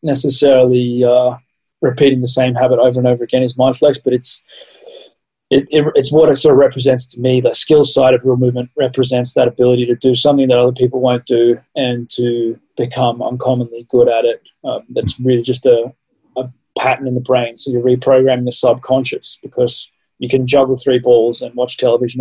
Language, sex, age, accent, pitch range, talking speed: English, male, 20-39, Australian, 125-135 Hz, 195 wpm